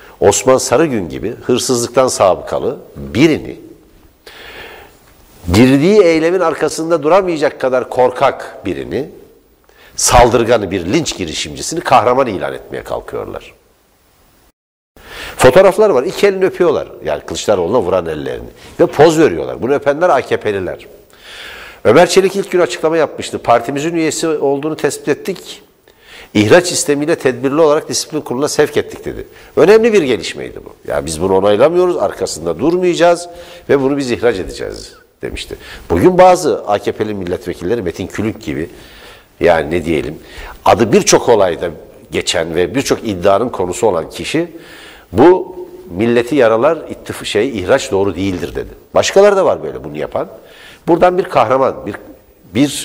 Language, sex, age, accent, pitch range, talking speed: Turkish, male, 60-79, native, 120-190 Hz, 125 wpm